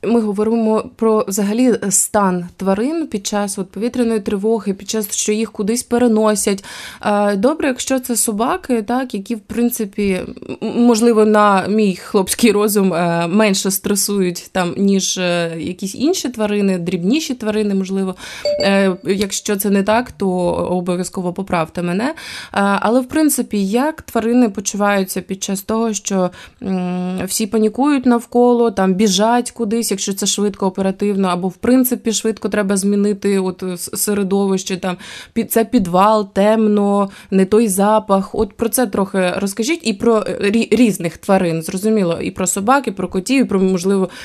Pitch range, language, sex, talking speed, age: 195-230 Hz, Ukrainian, female, 140 wpm, 20-39